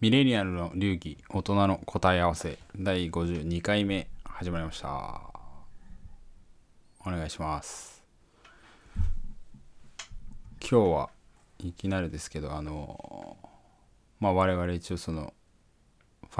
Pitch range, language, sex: 85-105 Hz, Japanese, male